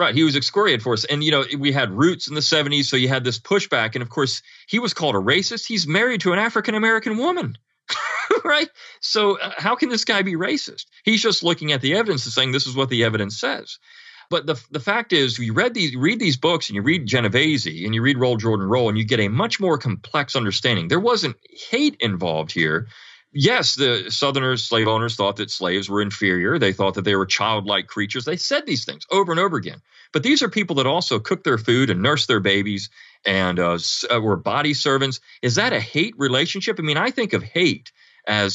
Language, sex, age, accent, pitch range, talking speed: English, male, 40-59, American, 105-175 Hz, 230 wpm